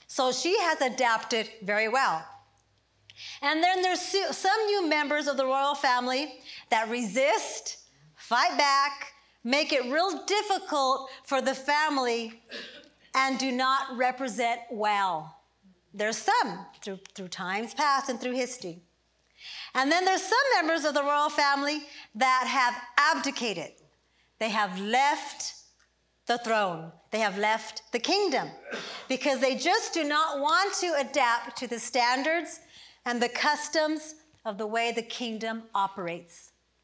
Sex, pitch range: female, 220-290 Hz